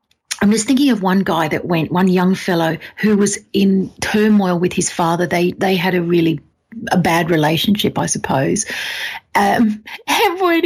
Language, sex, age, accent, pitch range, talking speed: English, female, 40-59, Australian, 185-220 Hz, 175 wpm